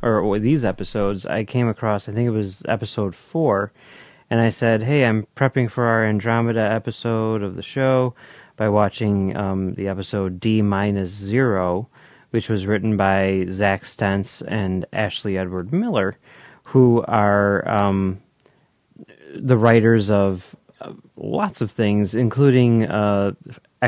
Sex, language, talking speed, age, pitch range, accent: male, English, 130 wpm, 30-49, 100-130 Hz, American